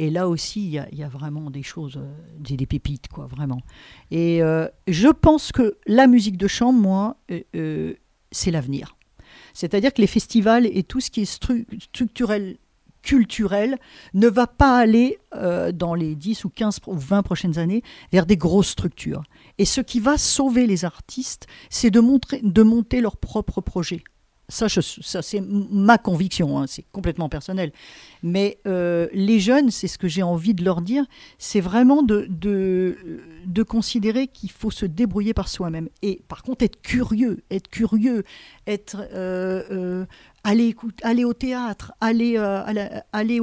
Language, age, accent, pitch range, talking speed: French, 50-69, French, 180-230 Hz, 165 wpm